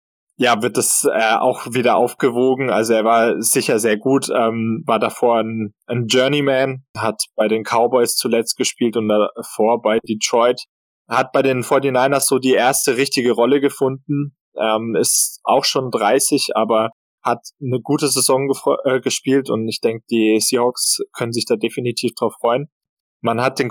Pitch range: 115-140 Hz